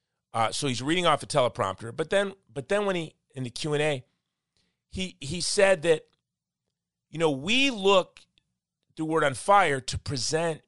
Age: 40-59